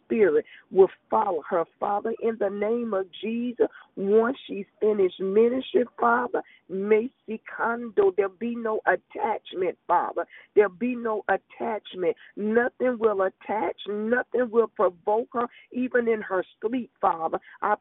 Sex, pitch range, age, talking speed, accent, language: female, 220-270 Hz, 40-59, 135 wpm, American, English